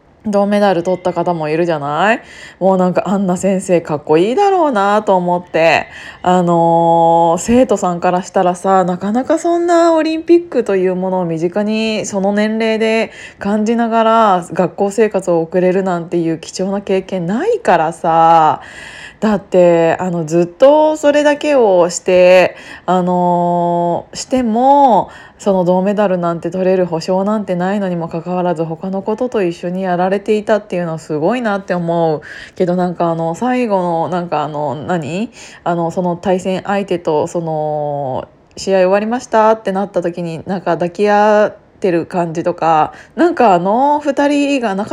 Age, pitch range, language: 20-39, 175-235 Hz, Japanese